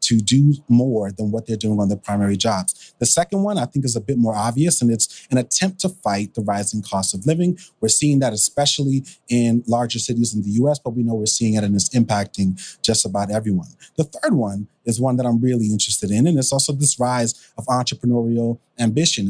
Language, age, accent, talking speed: English, 30-49, American, 225 wpm